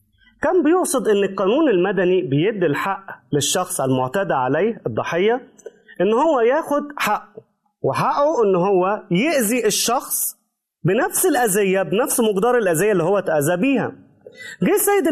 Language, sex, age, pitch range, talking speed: Arabic, male, 30-49, 190-290 Hz, 125 wpm